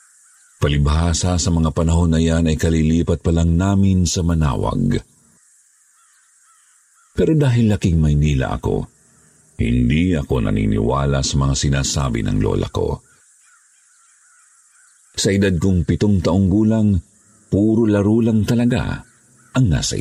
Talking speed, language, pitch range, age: 115 wpm, Filipino, 75-95 Hz, 50-69